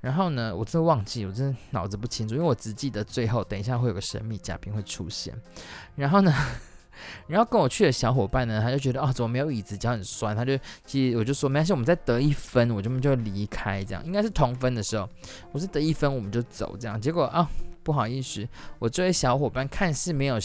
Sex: male